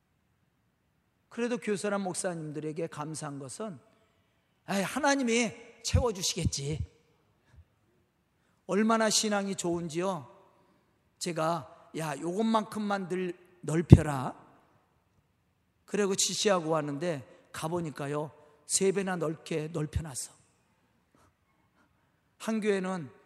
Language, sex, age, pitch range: Korean, male, 40-59, 155-215 Hz